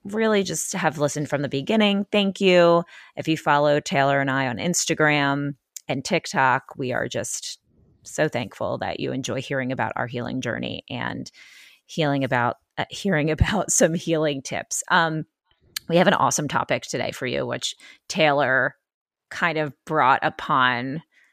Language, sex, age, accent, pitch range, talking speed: English, female, 30-49, American, 135-175 Hz, 160 wpm